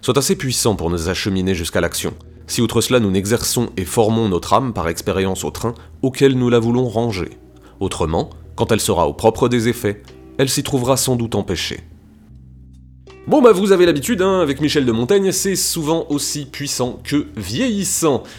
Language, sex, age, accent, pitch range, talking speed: French, male, 30-49, French, 105-155 Hz, 185 wpm